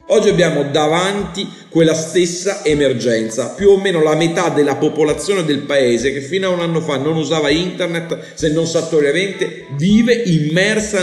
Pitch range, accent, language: 140-175 Hz, native, Italian